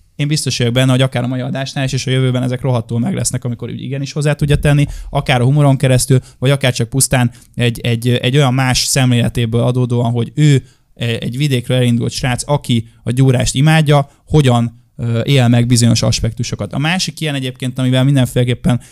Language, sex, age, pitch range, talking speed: Hungarian, male, 10-29, 120-135 Hz, 185 wpm